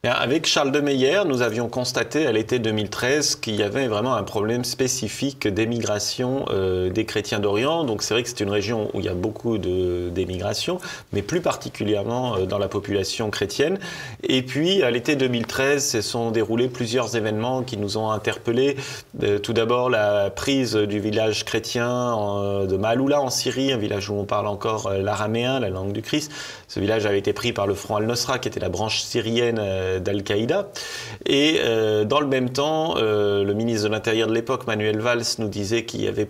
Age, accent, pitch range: 30-49, French, 100-125 Hz